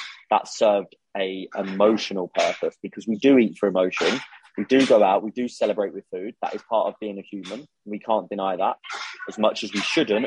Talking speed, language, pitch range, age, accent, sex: 210 wpm, English, 100-115 Hz, 20-39, British, male